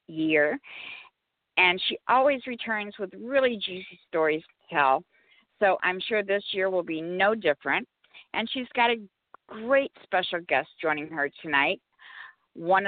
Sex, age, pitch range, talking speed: female, 50-69, 165-220 Hz, 145 wpm